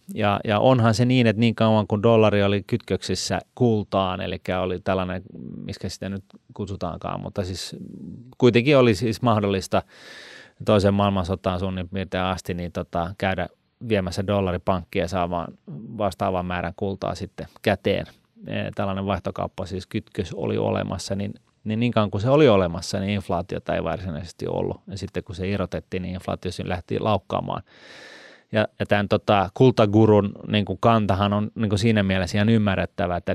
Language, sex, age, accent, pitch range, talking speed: Finnish, male, 30-49, native, 95-105 Hz, 155 wpm